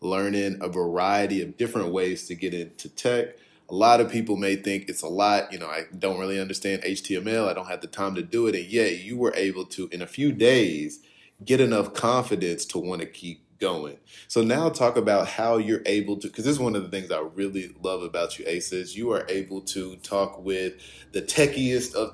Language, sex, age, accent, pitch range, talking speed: English, male, 20-39, American, 95-120 Hz, 220 wpm